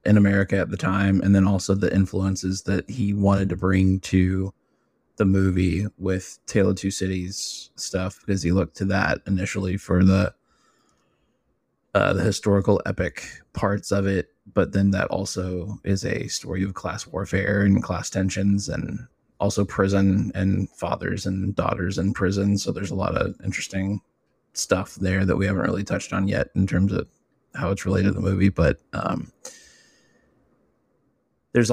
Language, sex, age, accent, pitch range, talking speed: English, male, 20-39, American, 95-100 Hz, 165 wpm